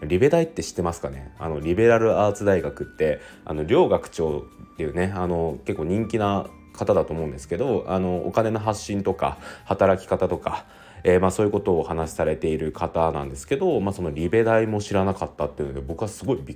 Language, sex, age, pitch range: Japanese, male, 20-39, 80-110 Hz